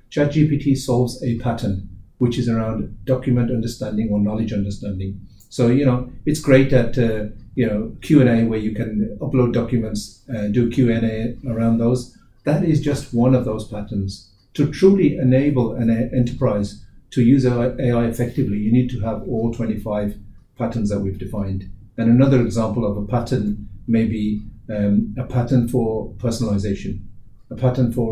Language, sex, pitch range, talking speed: English, male, 105-130 Hz, 160 wpm